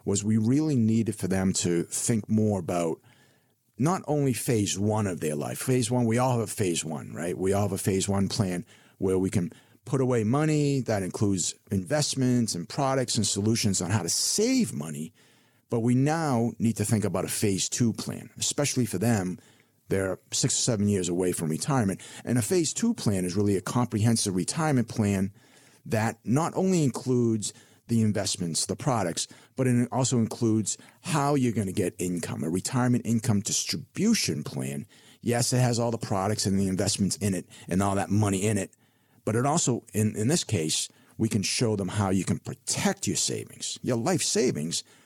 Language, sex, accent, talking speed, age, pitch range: English, male, American, 190 wpm, 50-69, 95-125 Hz